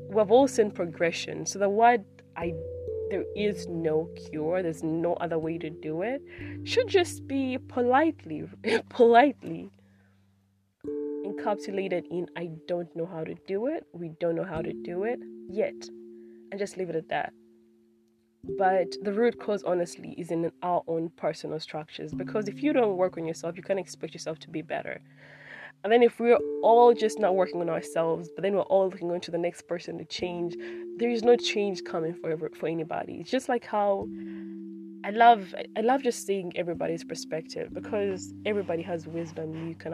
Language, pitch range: English, 155-205 Hz